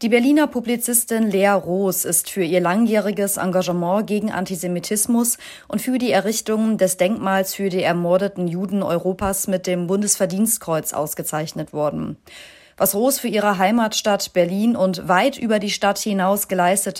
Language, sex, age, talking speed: German, female, 30-49, 145 wpm